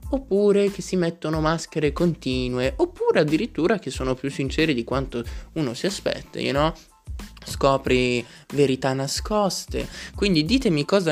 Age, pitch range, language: 20-39, 130-195 Hz, Italian